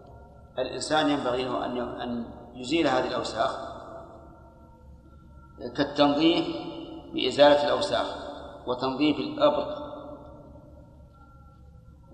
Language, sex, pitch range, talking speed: Arabic, male, 130-170 Hz, 60 wpm